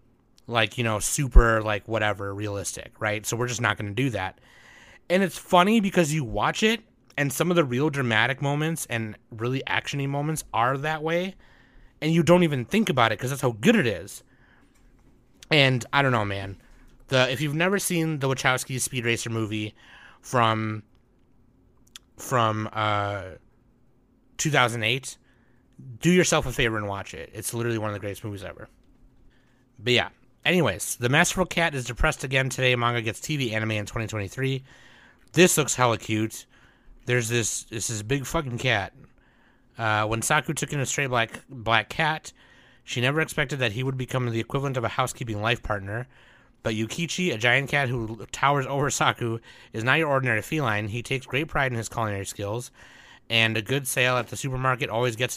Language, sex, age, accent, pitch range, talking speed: English, male, 30-49, American, 115-140 Hz, 180 wpm